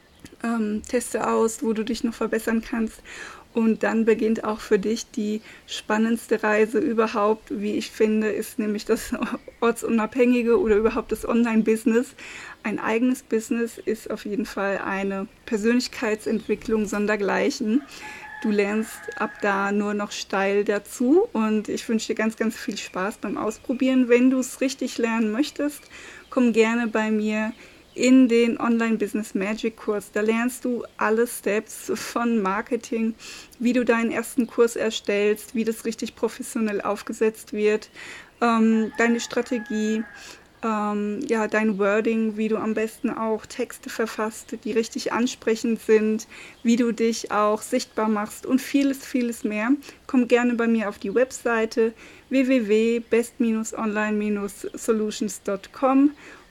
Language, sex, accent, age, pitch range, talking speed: German, female, German, 20-39, 215-245 Hz, 135 wpm